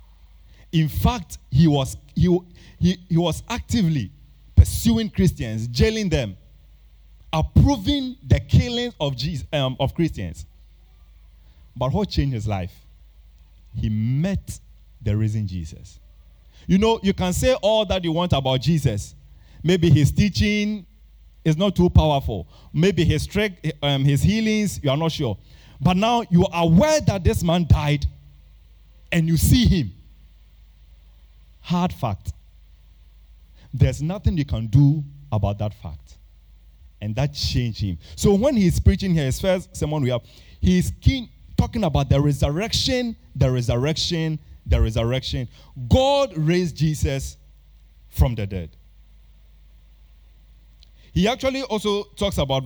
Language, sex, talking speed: English, male, 130 wpm